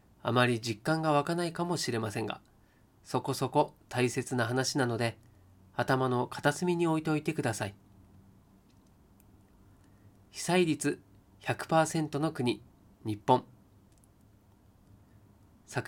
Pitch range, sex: 100-135 Hz, male